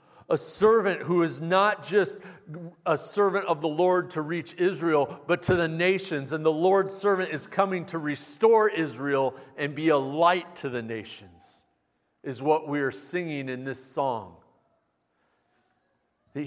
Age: 40-59